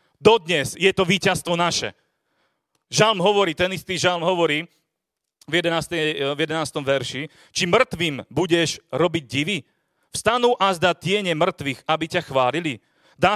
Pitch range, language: 150-185 Hz, Slovak